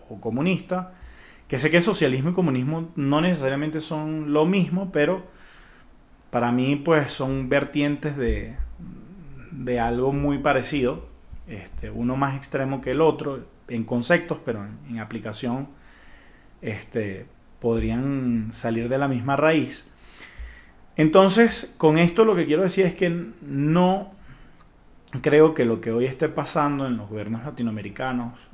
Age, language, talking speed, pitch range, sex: 30-49, Spanish, 135 wpm, 110-150 Hz, male